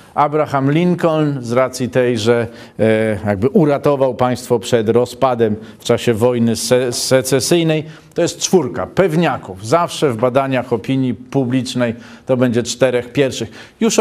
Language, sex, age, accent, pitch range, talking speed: Polish, male, 40-59, native, 115-150 Hz, 125 wpm